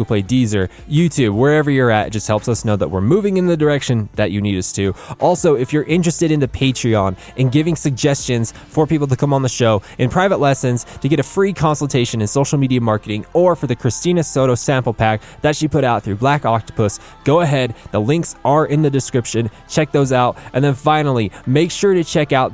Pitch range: 115-145 Hz